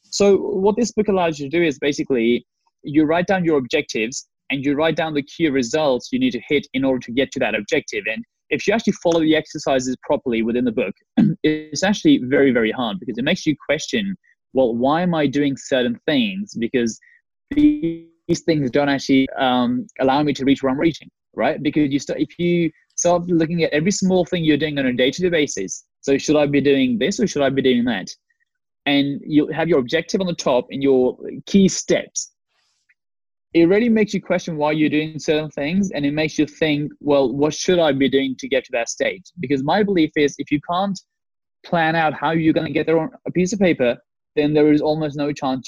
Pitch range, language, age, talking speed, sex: 135-180 Hz, English, 20-39, 220 wpm, male